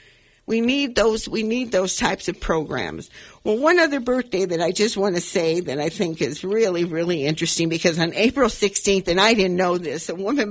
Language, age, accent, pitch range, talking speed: English, 50-69, American, 170-230 Hz, 210 wpm